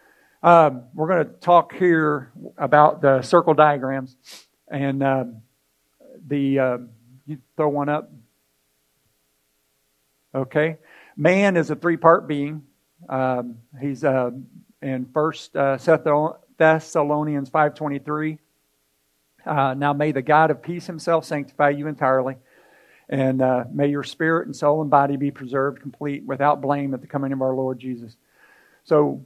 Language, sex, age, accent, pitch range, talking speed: English, male, 50-69, American, 130-155 Hz, 130 wpm